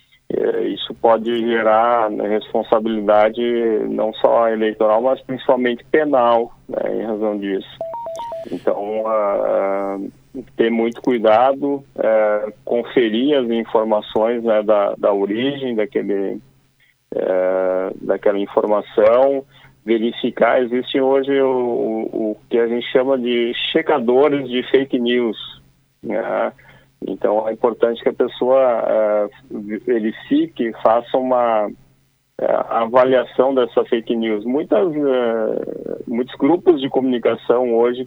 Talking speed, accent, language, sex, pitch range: 110 wpm, Brazilian, Portuguese, male, 110-130 Hz